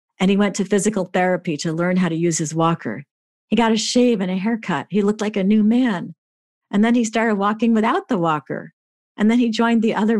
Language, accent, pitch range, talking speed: English, American, 170-225 Hz, 235 wpm